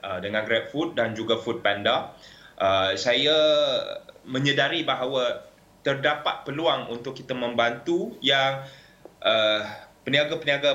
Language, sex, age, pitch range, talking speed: Malay, male, 20-39, 130-185 Hz, 100 wpm